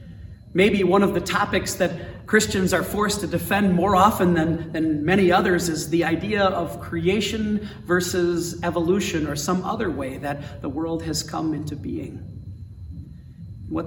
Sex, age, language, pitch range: male, 40-59, English, 145-190 Hz